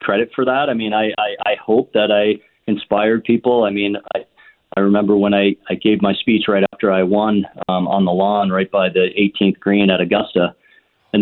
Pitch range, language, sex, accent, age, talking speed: 95-110 Hz, English, male, American, 40-59, 215 wpm